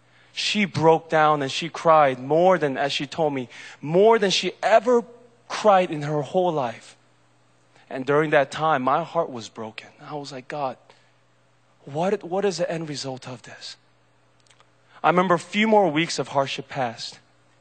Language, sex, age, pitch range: Korean, male, 20-39, 110-180 Hz